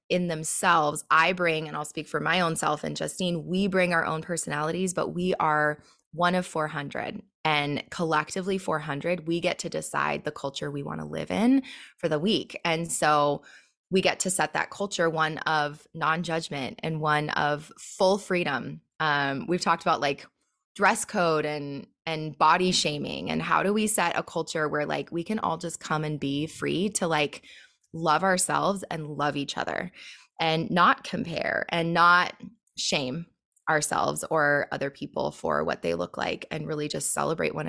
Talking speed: 180 wpm